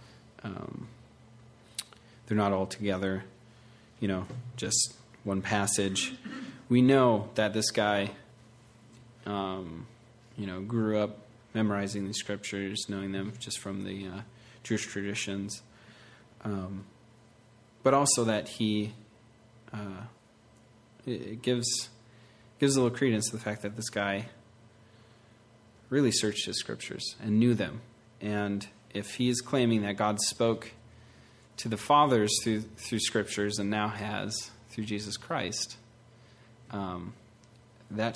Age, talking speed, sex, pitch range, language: 30-49, 125 wpm, male, 105-120 Hz, English